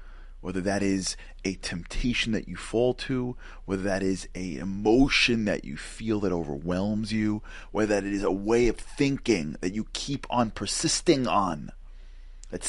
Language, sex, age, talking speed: English, male, 30-49, 160 wpm